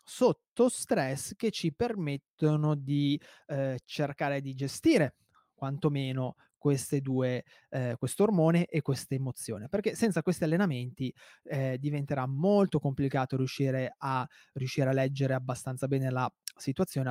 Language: Italian